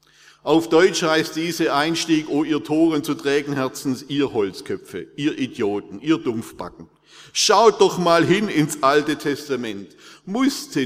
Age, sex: 50-69, male